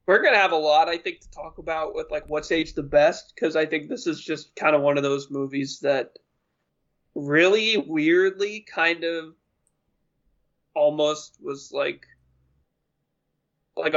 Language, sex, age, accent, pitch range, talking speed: English, male, 20-39, American, 150-220 Hz, 160 wpm